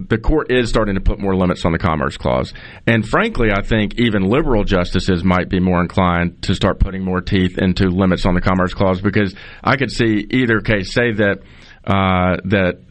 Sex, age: male, 40-59